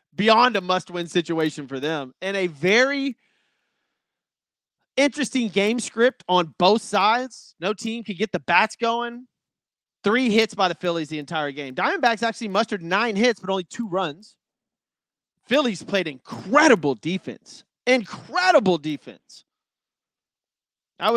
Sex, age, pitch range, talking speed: male, 30-49, 165-230 Hz, 130 wpm